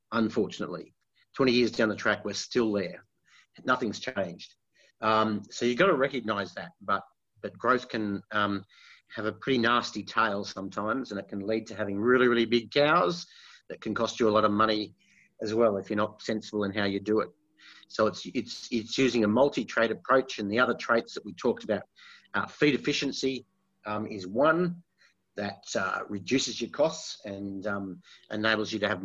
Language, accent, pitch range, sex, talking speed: English, Australian, 105-125 Hz, male, 190 wpm